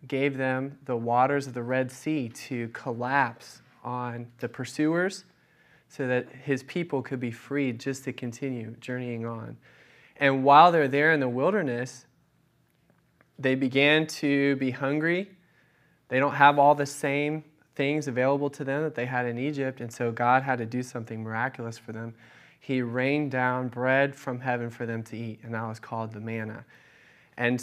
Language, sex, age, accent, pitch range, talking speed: English, male, 20-39, American, 125-145 Hz, 170 wpm